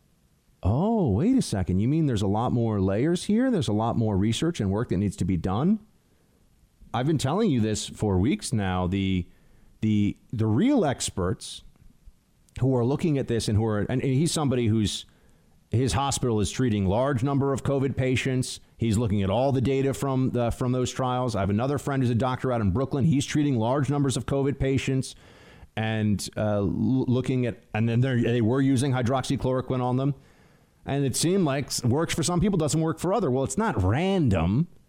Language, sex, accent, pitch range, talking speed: English, male, American, 110-140 Hz, 200 wpm